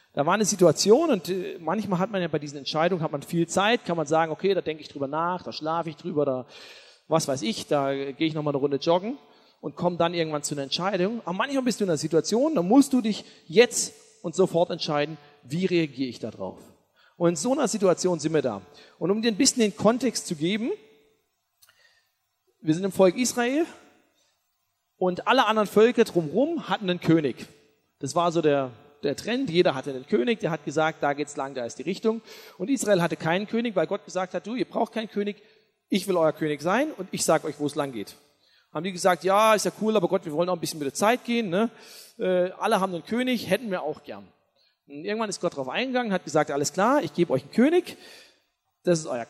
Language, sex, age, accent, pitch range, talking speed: German, male, 40-59, German, 160-225 Hz, 230 wpm